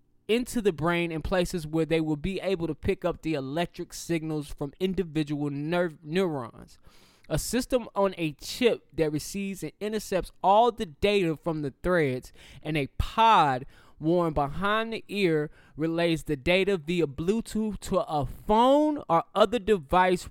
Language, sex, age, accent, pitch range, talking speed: English, male, 20-39, American, 150-195 Hz, 155 wpm